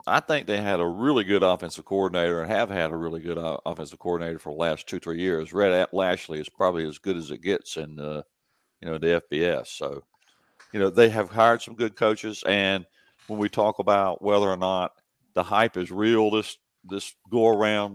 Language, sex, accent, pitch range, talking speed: English, male, American, 85-105 Hz, 215 wpm